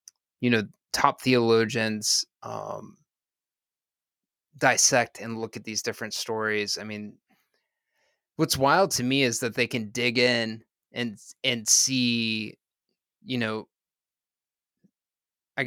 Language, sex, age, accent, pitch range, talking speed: English, male, 20-39, American, 110-125 Hz, 115 wpm